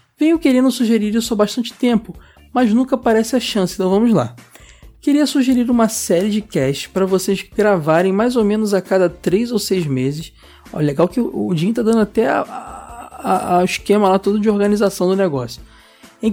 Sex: male